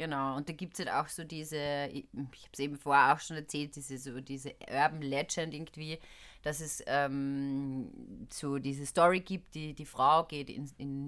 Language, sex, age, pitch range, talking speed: German, female, 30-49, 140-175 Hz, 195 wpm